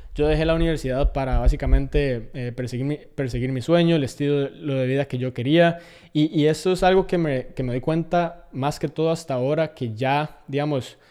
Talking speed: 210 wpm